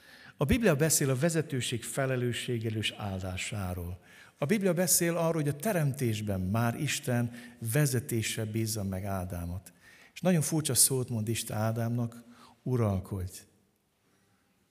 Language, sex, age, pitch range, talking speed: Hungarian, male, 60-79, 100-130 Hz, 115 wpm